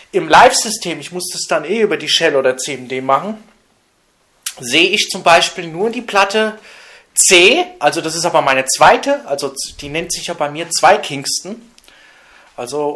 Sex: male